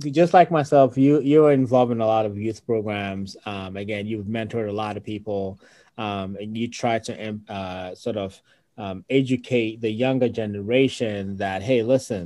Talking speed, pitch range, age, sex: 175 wpm, 105-140 Hz, 20-39, male